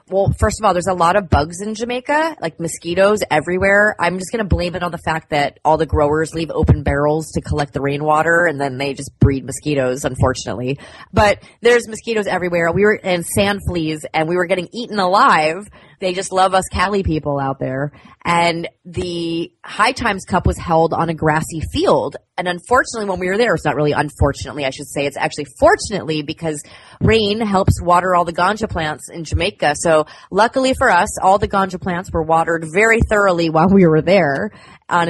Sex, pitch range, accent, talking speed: female, 155-195 Hz, American, 200 wpm